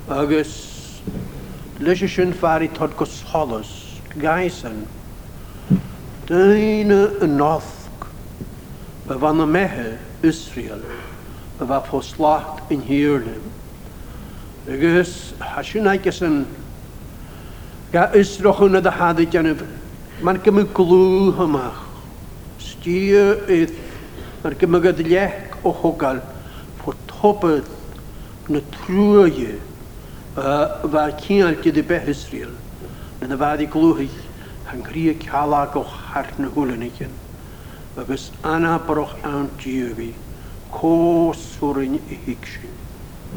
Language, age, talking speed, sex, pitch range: English, 60-79, 55 wpm, male, 140-190 Hz